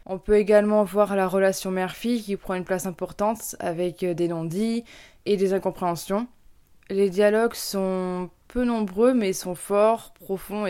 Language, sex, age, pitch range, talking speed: French, female, 20-39, 180-215 Hz, 150 wpm